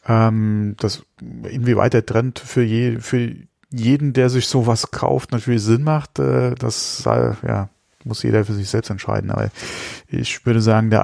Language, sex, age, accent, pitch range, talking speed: German, male, 30-49, German, 95-120 Hz, 165 wpm